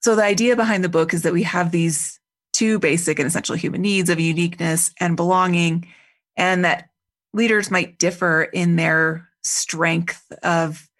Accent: American